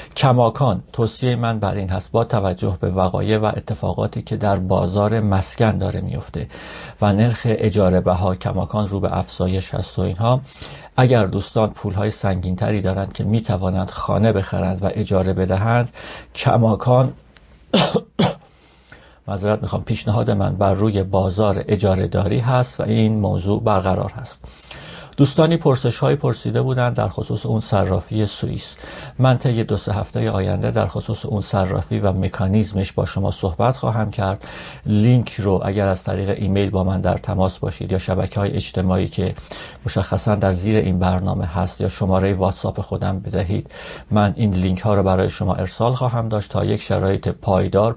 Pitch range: 95-110 Hz